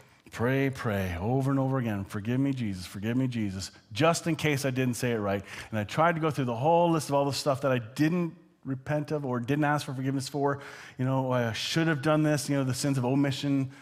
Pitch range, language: 105-140 Hz, English